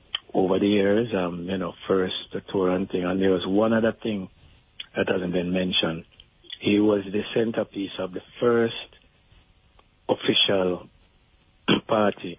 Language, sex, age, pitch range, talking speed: English, male, 60-79, 90-100 Hz, 140 wpm